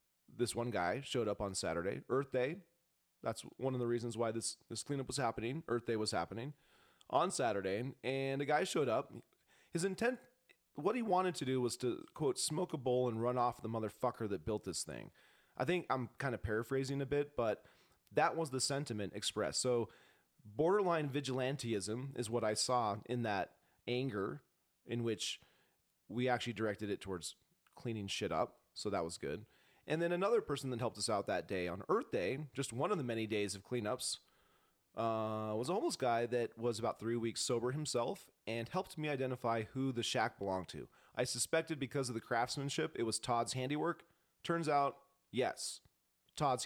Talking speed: 190 wpm